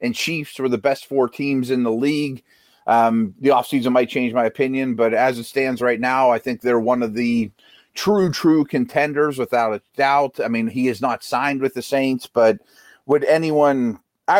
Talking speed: 200 wpm